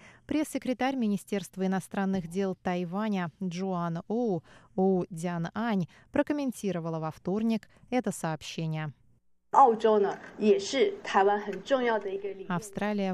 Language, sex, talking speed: Russian, female, 75 wpm